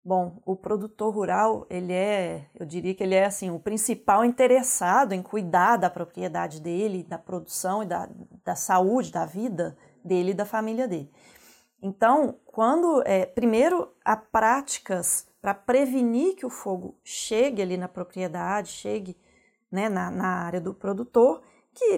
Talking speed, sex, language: 150 wpm, female, Portuguese